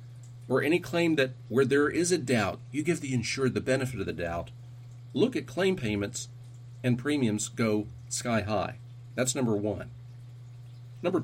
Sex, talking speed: male, 165 wpm